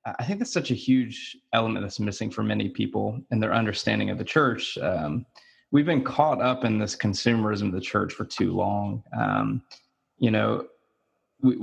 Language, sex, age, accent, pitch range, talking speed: English, male, 20-39, American, 100-130 Hz, 185 wpm